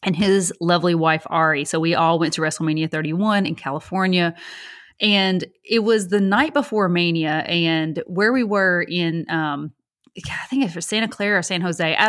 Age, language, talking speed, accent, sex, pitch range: 30-49, English, 185 wpm, American, female, 165-195 Hz